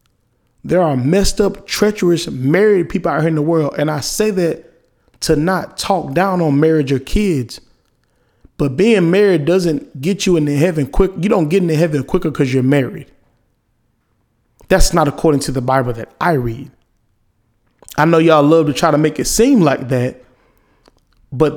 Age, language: 20-39, English